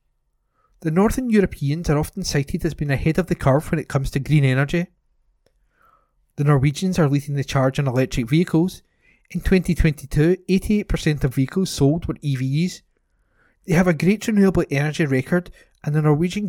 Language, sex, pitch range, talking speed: English, male, 145-180 Hz, 165 wpm